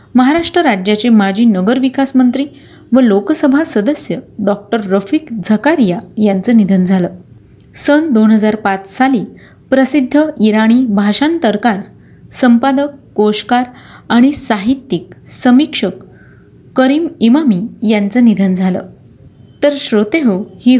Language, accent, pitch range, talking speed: Marathi, native, 215-290 Hz, 95 wpm